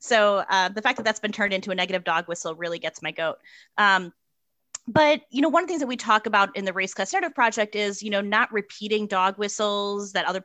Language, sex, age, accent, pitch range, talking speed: English, female, 30-49, American, 185-235 Hz, 245 wpm